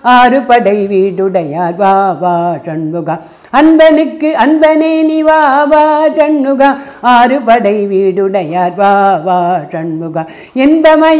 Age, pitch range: 60-79, 195-310 Hz